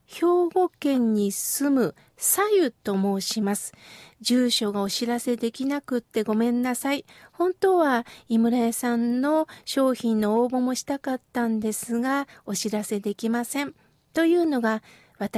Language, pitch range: Japanese, 230-305 Hz